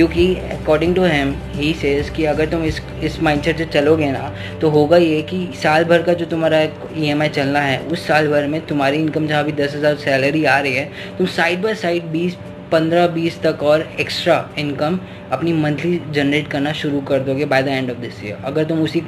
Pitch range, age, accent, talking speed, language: 140-165 Hz, 10-29, native, 215 wpm, Hindi